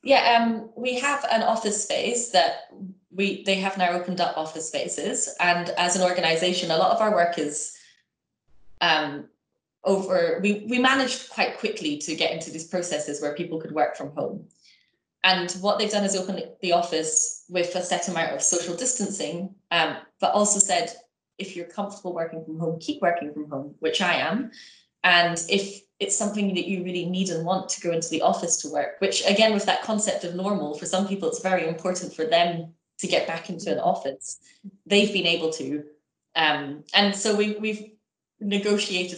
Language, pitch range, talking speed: English, 160-205 Hz, 190 wpm